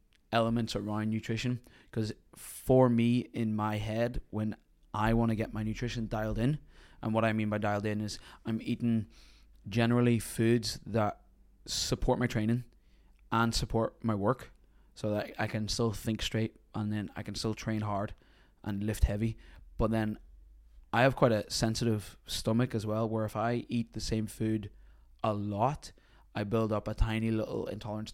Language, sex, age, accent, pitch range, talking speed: English, male, 20-39, British, 105-115 Hz, 175 wpm